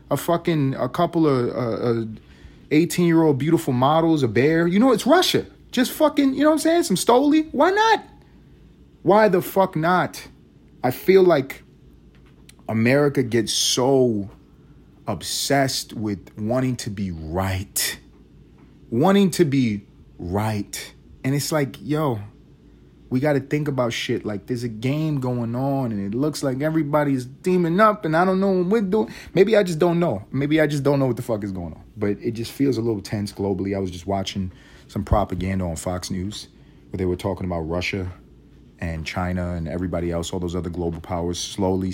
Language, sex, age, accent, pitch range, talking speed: English, male, 30-49, American, 95-155 Hz, 180 wpm